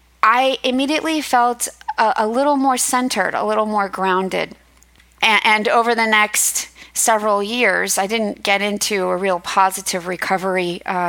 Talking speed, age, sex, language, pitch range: 150 wpm, 40-59, female, English, 190-235 Hz